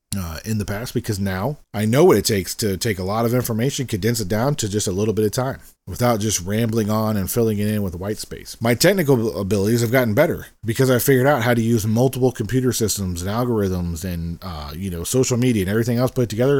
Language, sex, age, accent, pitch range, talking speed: English, male, 40-59, American, 100-125 Hz, 240 wpm